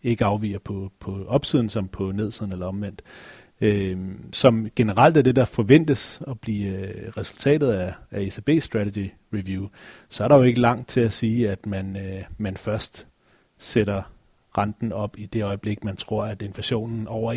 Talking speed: 165 wpm